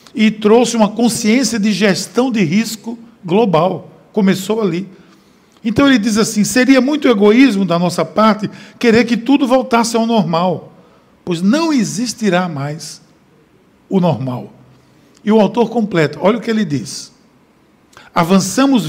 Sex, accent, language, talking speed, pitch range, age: male, Brazilian, Portuguese, 135 wpm, 185-230 Hz, 60-79